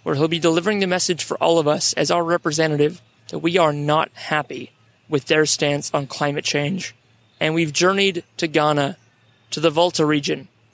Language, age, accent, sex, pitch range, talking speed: English, 30-49, American, male, 140-170 Hz, 185 wpm